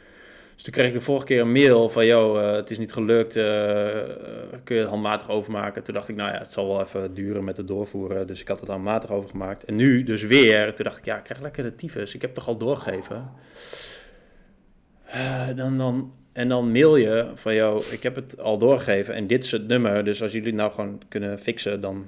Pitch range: 105-130 Hz